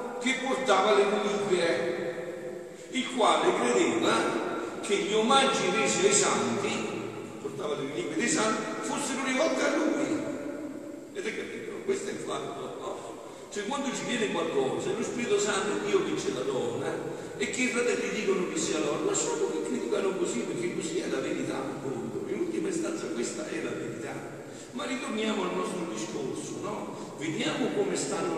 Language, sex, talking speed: Italian, male, 165 wpm